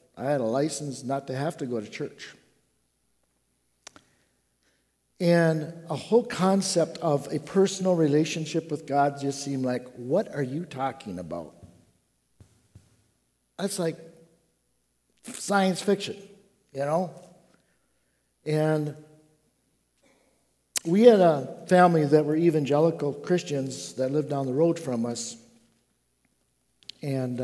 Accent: American